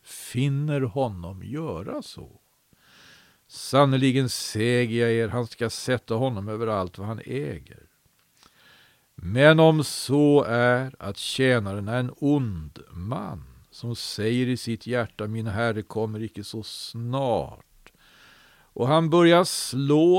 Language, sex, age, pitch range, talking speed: Swedish, male, 50-69, 105-130 Hz, 125 wpm